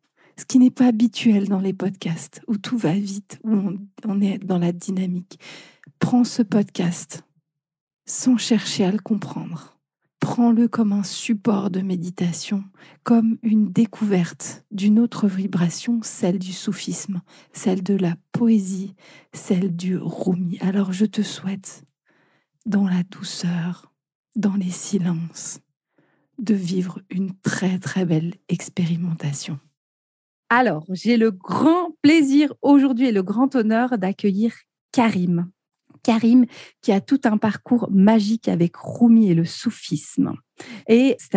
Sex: female